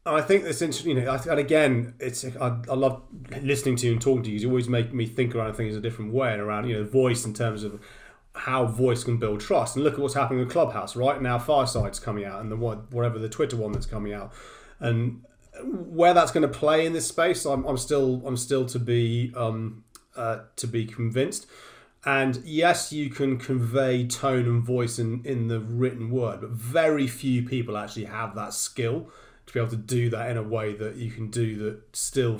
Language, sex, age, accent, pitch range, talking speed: English, male, 30-49, British, 115-135 Hz, 220 wpm